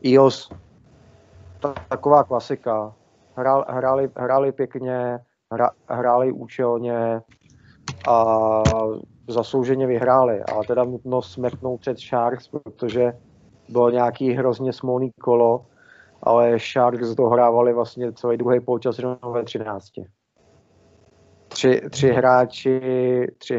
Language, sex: Czech, male